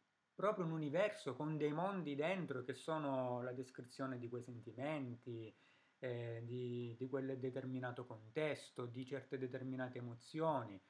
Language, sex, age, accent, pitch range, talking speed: Italian, male, 30-49, native, 125-155 Hz, 130 wpm